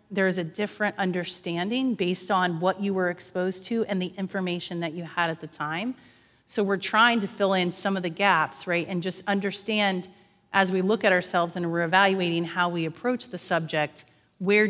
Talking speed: 200 wpm